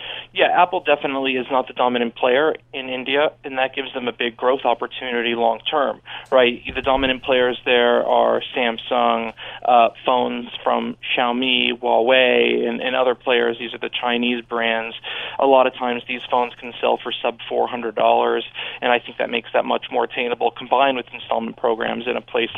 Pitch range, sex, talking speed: 120-135 Hz, male, 180 wpm